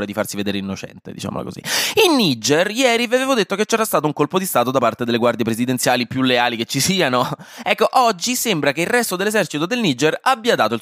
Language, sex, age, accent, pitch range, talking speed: Italian, male, 20-39, native, 115-175 Hz, 225 wpm